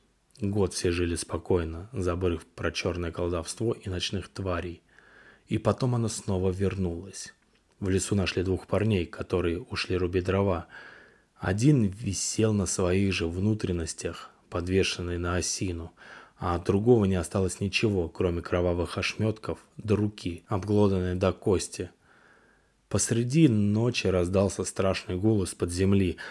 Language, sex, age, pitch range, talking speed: Russian, male, 20-39, 90-105 Hz, 125 wpm